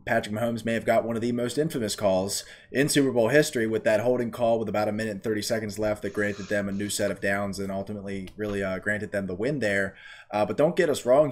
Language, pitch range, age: English, 105-130 Hz, 20-39